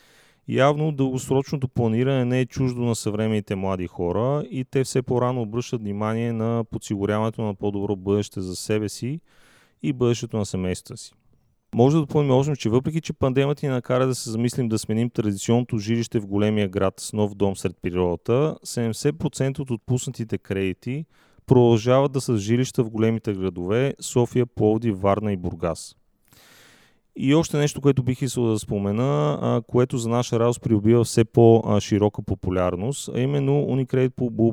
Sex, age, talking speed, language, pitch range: male, 30-49, 155 wpm, Bulgarian, 105-130 Hz